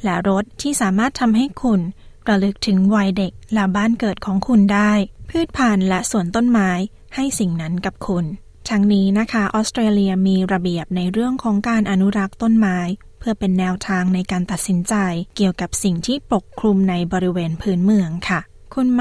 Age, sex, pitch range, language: 20-39, female, 190-220 Hz, Thai